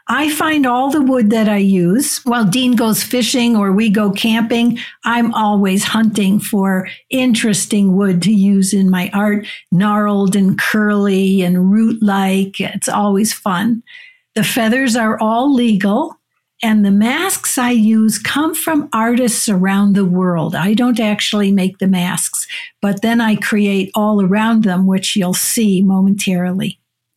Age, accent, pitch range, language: 60-79, American, 195-230 Hz, English